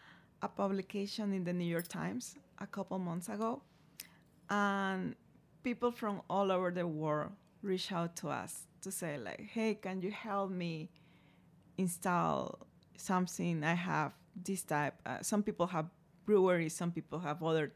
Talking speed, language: 150 wpm, English